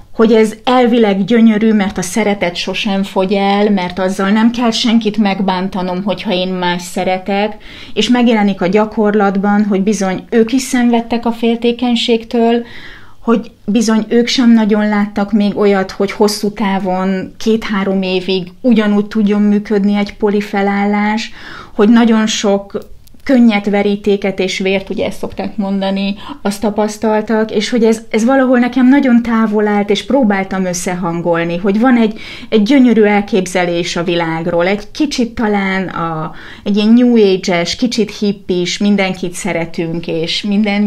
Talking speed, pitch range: 140 wpm, 195-230 Hz